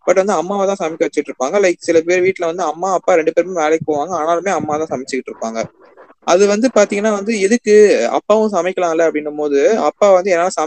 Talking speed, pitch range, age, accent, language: 190 wpm, 145-190 Hz, 20-39, native, Tamil